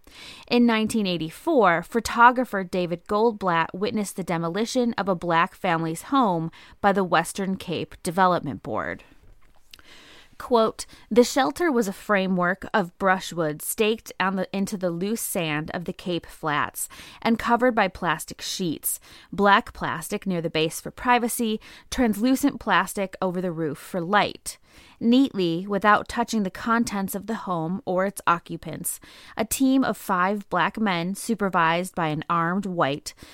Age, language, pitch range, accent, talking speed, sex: 20-39, English, 170-230 Hz, American, 140 wpm, female